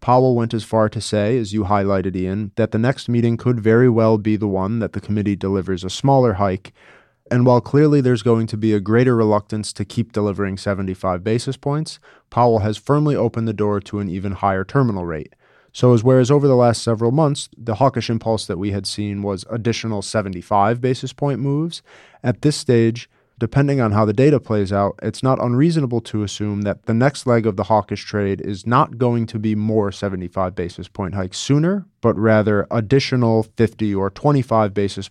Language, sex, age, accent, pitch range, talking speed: English, male, 30-49, American, 100-125 Hz, 200 wpm